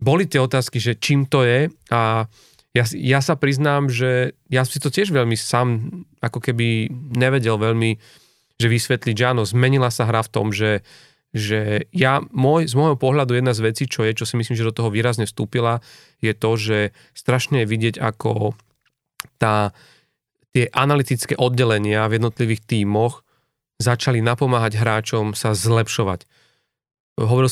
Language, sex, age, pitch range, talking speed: Slovak, male, 30-49, 110-130 Hz, 155 wpm